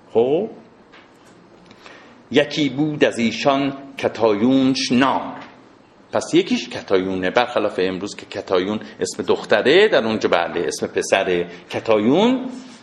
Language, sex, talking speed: Persian, male, 100 wpm